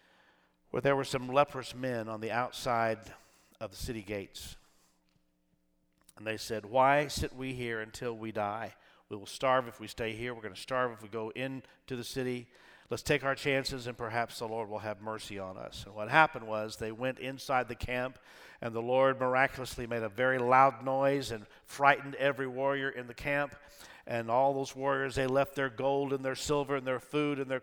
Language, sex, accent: English, male, American